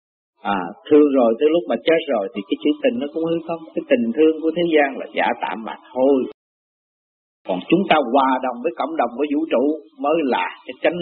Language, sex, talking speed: Vietnamese, male, 230 wpm